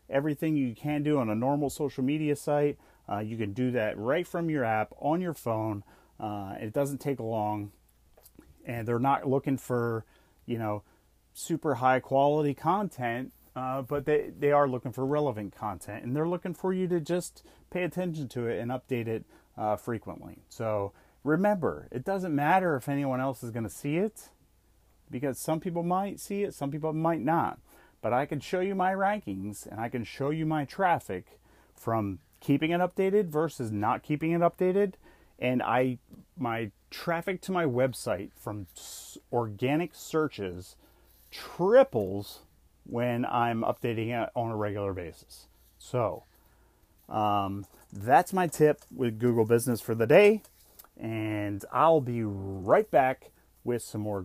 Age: 30-49